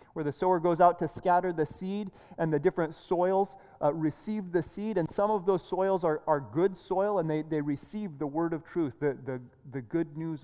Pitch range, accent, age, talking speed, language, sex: 155-210 Hz, American, 30-49, 220 wpm, English, male